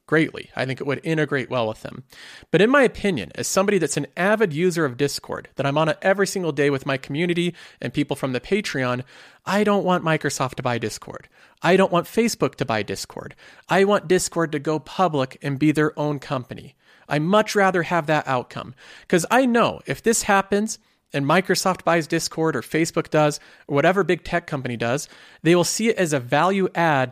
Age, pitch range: 40-59, 140-175 Hz